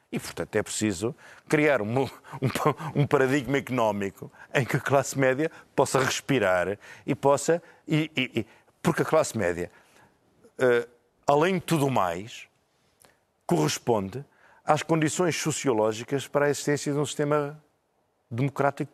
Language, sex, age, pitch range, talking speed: Portuguese, male, 50-69, 120-155 Hz, 135 wpm